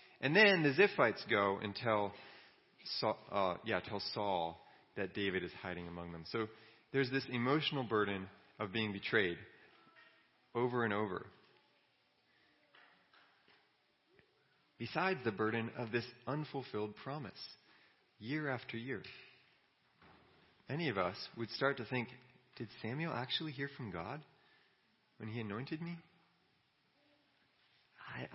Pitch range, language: 95-125 Hz, English